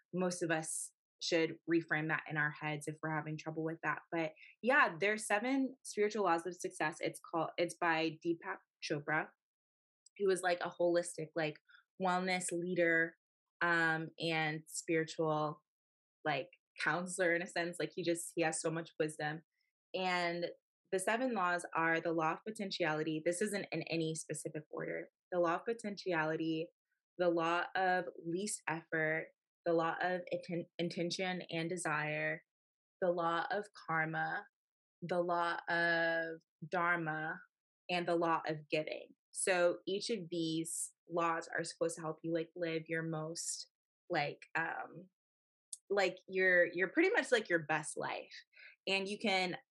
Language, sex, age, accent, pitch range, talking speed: English, female, 20-39, American, 160-180 Hz, 150 wpm